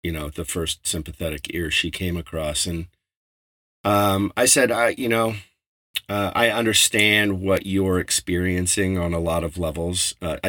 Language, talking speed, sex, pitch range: English, 160 wpm, male, 85-100 Hz